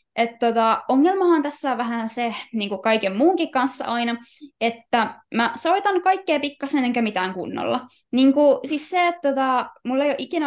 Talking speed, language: 165 wpm, Finnish